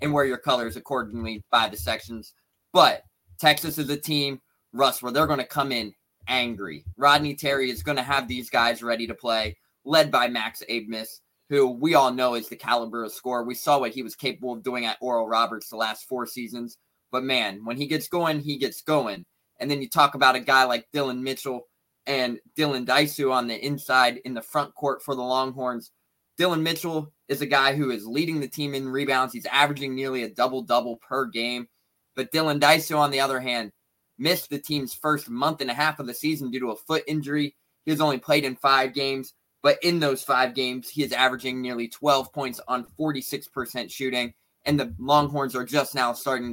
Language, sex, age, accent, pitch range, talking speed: English, male, 20-39, American, 120-145 Hz, 210 wpm